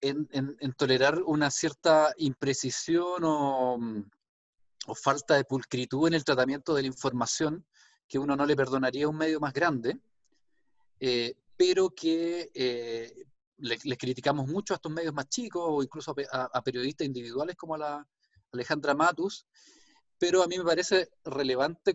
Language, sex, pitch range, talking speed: Spanish, male, 130-165 Hz, 160 wpm